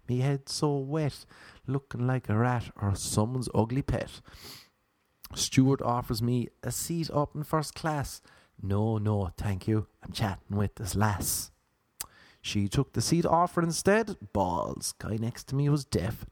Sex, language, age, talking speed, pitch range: male, English, 30-49, 160 wpm, 105-145 Hz